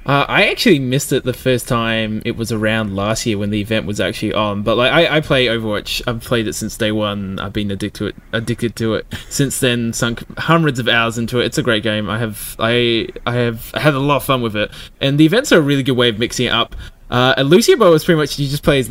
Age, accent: 20-39, Australian